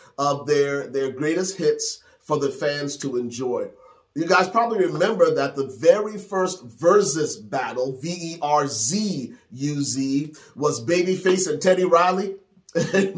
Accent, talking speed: American, 125 wpm